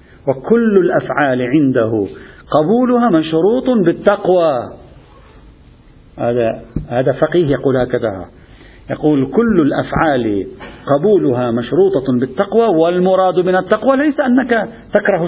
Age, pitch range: 50-69, 145-195 Hz